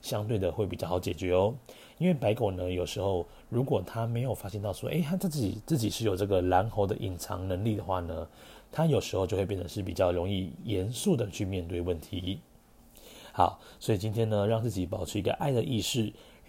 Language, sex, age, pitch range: Chinese, male, 30-49, 90-115 Hz